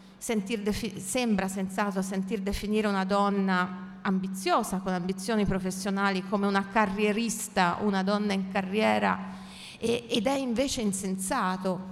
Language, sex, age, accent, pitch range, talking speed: Italian, female, 40-59, native, 185-210 Hz, 115 wpm